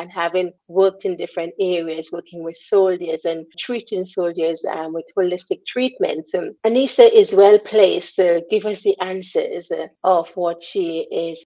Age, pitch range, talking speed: 40-59, 175-235 Hz, 150 wpm